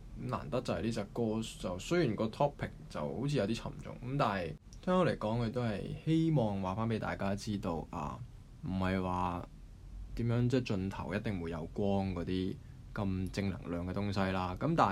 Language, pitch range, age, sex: Chinese, 95-120 Hz, 20-39, male